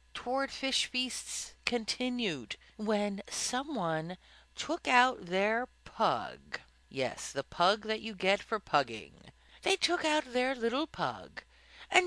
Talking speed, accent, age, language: 125 wpm, American, 50-69, English